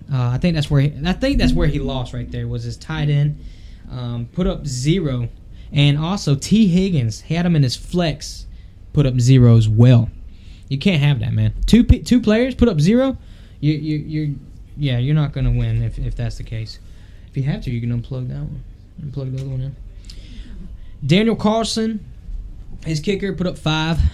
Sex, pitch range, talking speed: male, 115-150 Hz, 200 wpm